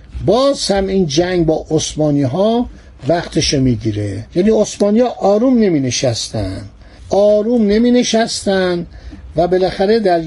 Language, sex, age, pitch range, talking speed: Persian, male, 60-79, 155-205 Hz, 125 wpm